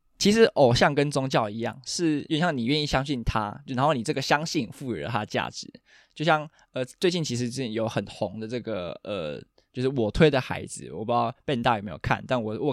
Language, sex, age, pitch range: Chinese, male, 20-39, 110-145 Hz